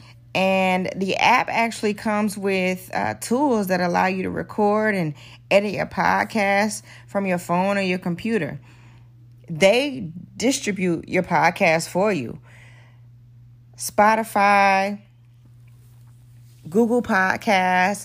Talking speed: 105 wpm